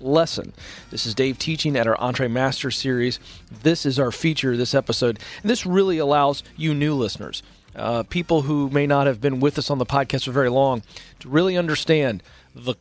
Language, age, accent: English, 40-59, American